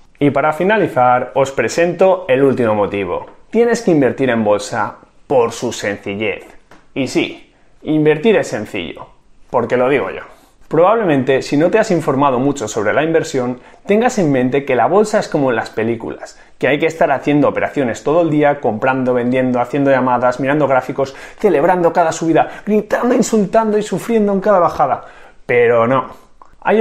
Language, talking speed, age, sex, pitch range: Spanish, 165 wpm, 30-49, male, 130-195 Hz